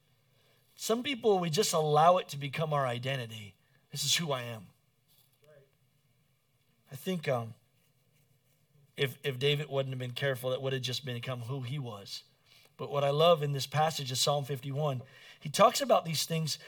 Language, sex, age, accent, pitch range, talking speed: English, male, 40-59, American, 135-180 Hz, 175 wpm